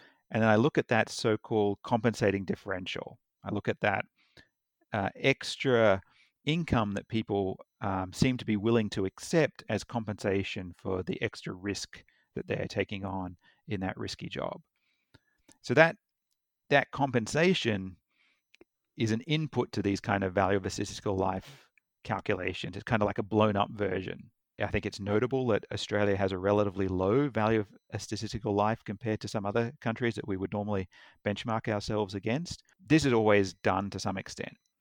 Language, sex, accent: English, male, Australian